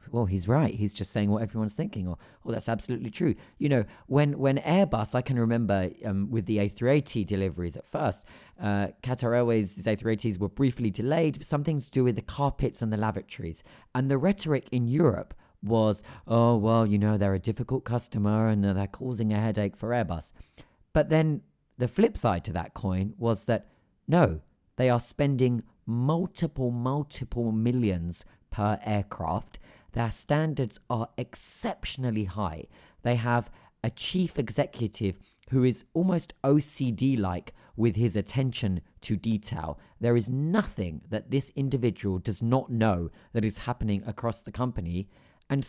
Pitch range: 105-130 Hz